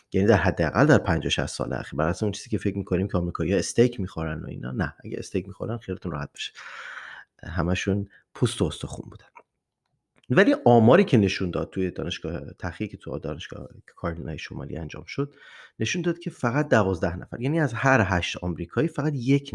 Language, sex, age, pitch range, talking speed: Persian, male, 30-49, 85-115 Hz, 175 wpm